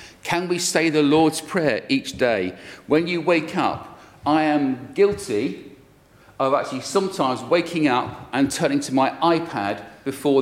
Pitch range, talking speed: 125-175 Hz, 150 wpm